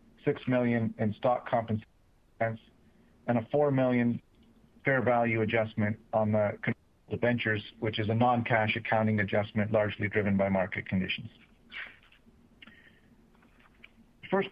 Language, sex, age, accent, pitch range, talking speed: English, male, 50-69, American, 110-125 Hz, 110 wpm